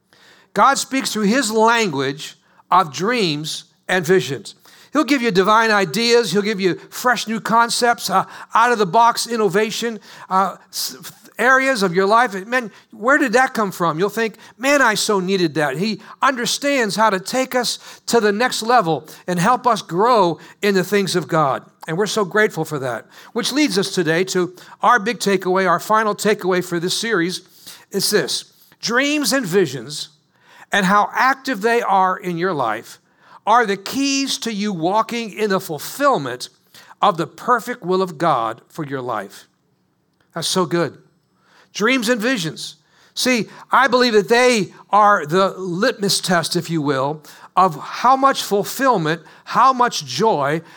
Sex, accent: male, American